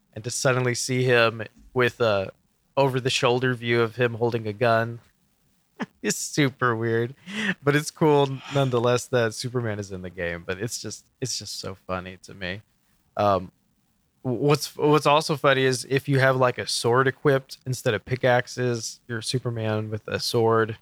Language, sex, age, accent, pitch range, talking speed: English, male, 20-39, American, 110-140 Hz, 165 wpm